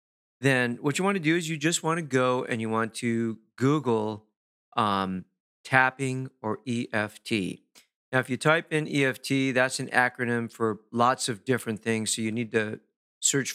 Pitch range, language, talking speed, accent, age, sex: 110-135 Hz, English, 175 wpm, American, 40-59, male